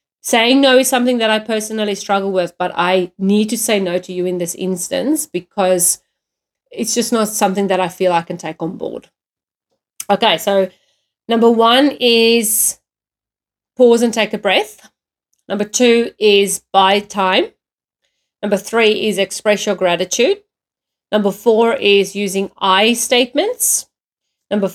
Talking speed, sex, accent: 150 wpm, female, Australian